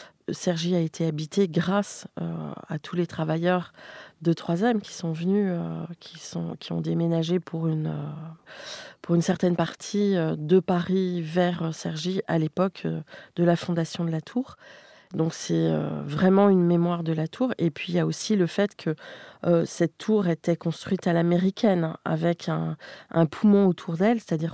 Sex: female